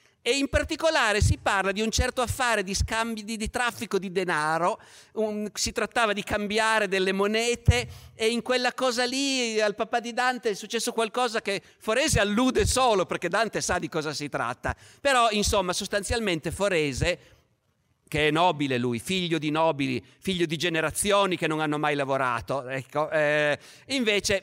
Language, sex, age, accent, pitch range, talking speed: Italian, male, 50-69, native, 145-220 Hz, 165 wpm